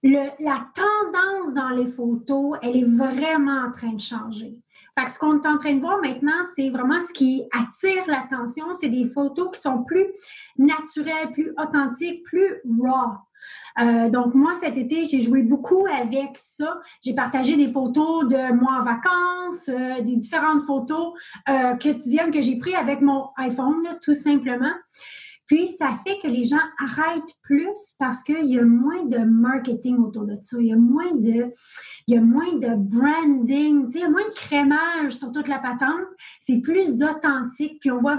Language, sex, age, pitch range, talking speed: French, female, 30-49, 250-310 Hz, 180 wpm